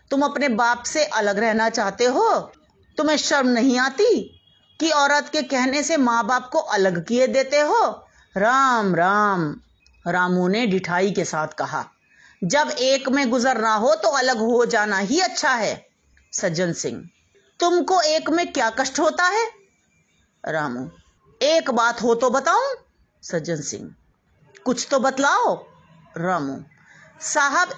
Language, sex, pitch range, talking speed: Hindi, female, 210-300 Hz, 145 wpm